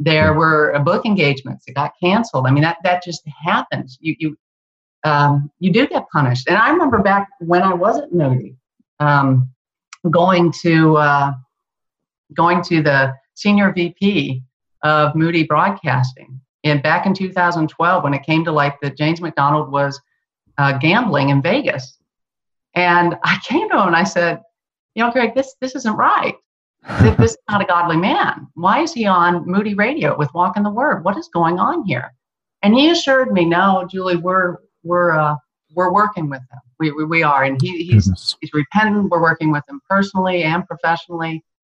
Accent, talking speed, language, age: American, 180 wpm, English, 50-69